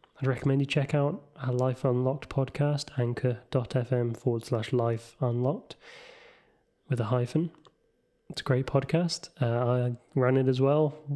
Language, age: English, 20-39